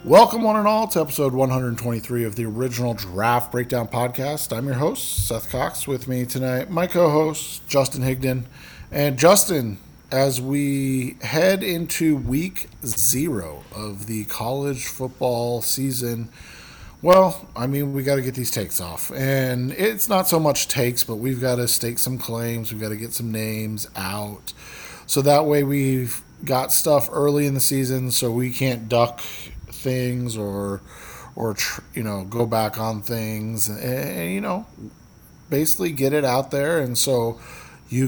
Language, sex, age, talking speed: English, male, 40-59, 160 wpm